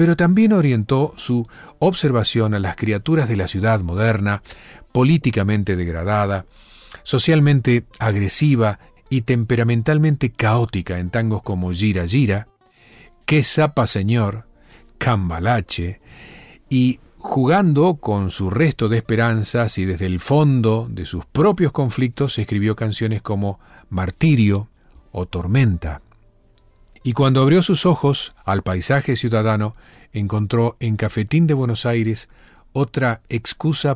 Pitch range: 100-130 Hz